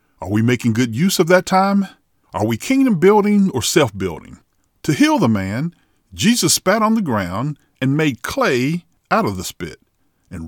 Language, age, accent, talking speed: English, 50-69, American, 185 wpm